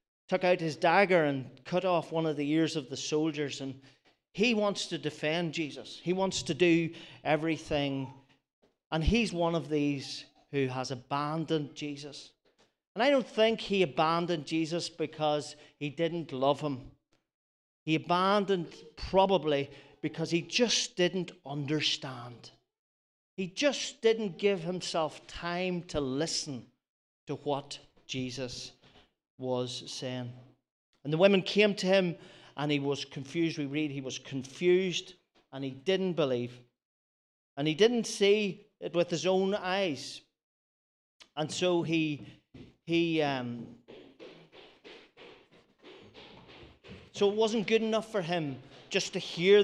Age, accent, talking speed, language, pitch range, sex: 40-59, British, 135 wpm, English, 140-185 Hz, male